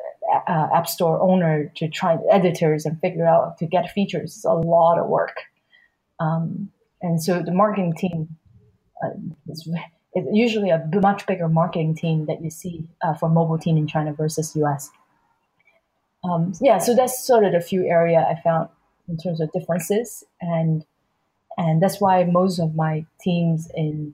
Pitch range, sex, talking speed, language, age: 160-180 Hz, female, 165 wpm, English, 30-49